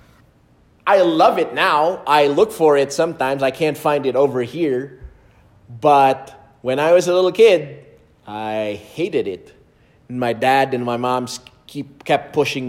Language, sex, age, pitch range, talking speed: English, male, 30-49, 125-170 Hz, 155 wpm